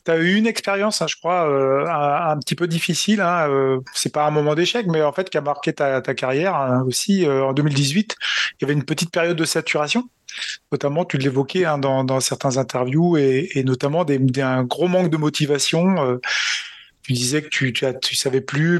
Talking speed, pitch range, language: 225 wpm, 140-175 Hz, French